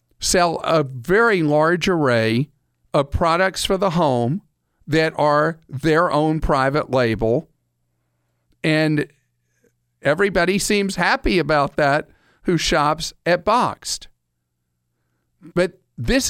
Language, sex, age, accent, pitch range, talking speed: English, male, 50-69, American, 125-175 Hz, 105 wpm